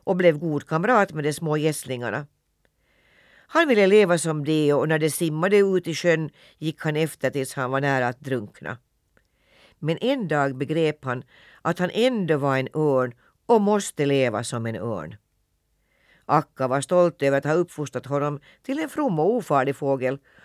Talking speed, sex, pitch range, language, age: 175 wpm, female, 130-170 Hz, Swedish, 60-79